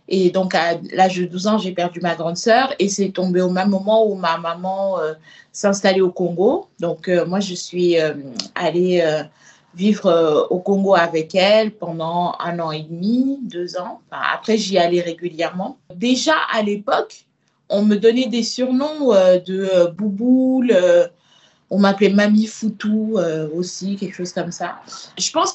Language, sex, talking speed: French, female, 180 wpm